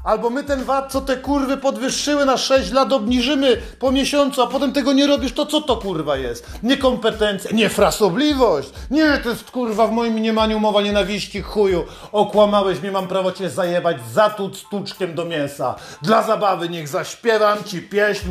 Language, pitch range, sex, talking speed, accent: Polish, 185-235 Hz, male, 170 wpm, native